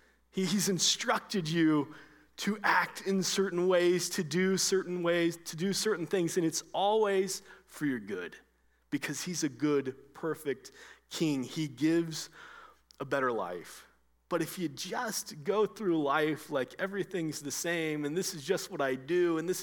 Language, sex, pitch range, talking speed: English, male, 145-185 Hz, 160 wpm